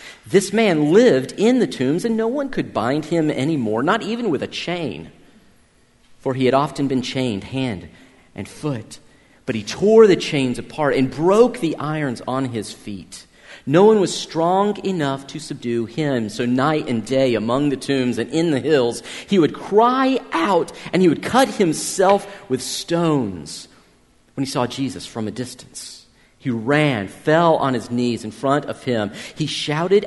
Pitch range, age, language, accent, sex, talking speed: 130-195 Hz, 40-59, English, American, male, 180 wpm